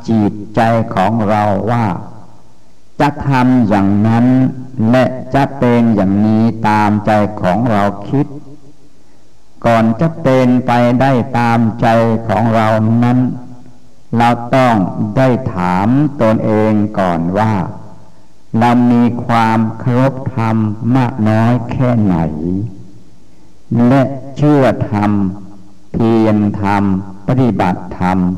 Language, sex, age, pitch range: English, male, 60-79, 100-125 Hz